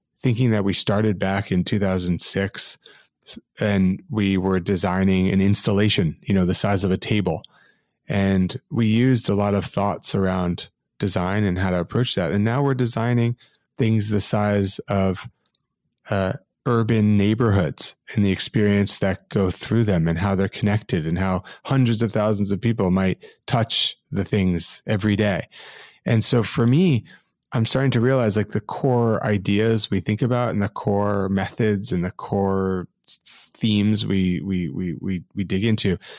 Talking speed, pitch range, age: 165 wpm, 95-110 Hz, 30-49